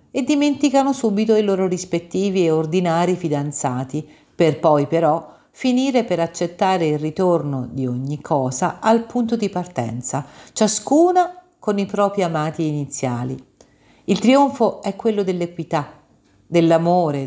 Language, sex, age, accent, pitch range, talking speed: Italian, female, 50-69, native, 140-200 Hz, 125 wpm